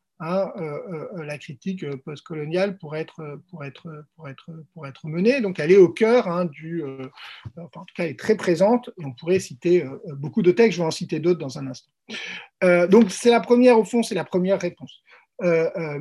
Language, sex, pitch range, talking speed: French, male, 155-200 Hz, 225 wpm